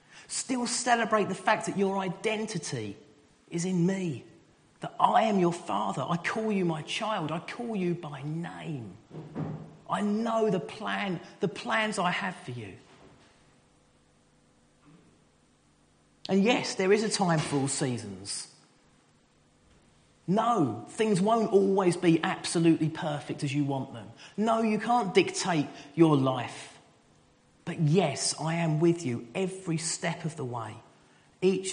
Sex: male